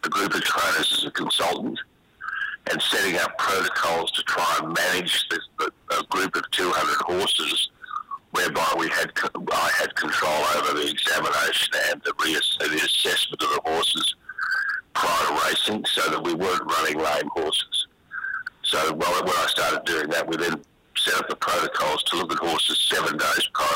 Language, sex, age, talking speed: English, male, 60-79, 175 wpm